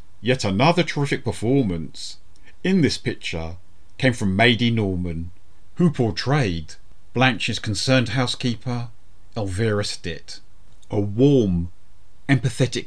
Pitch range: 90-135 Hz